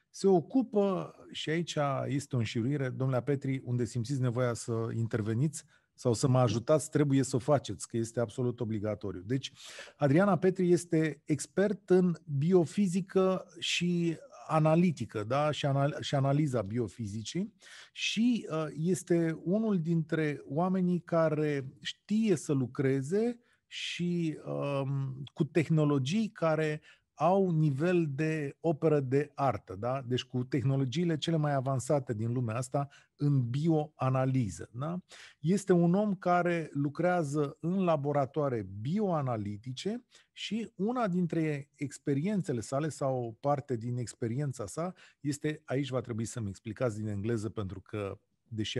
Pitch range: 125-170 Hz